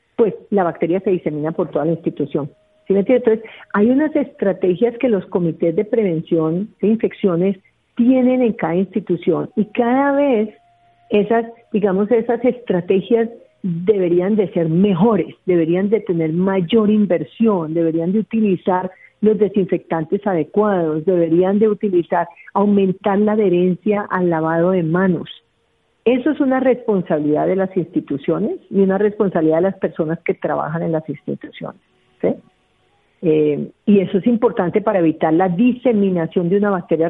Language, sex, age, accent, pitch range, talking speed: Spanish, female, 50-69, Colombian, 175-235 Hz, 140 wpm